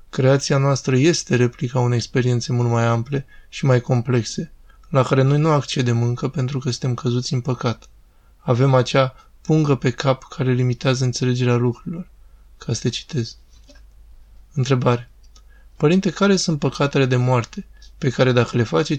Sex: male